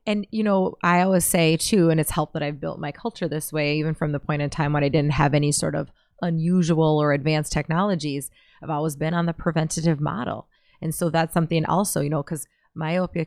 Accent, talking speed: American, 225 wpm